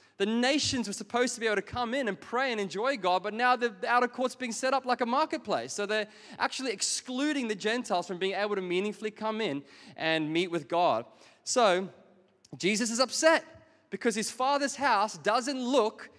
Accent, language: Australian, English